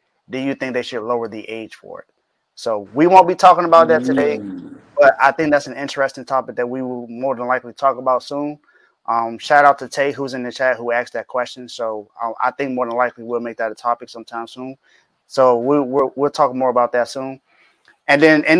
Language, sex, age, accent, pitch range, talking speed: English, male, 20-39, American, 120-145 Hz, 230 wpm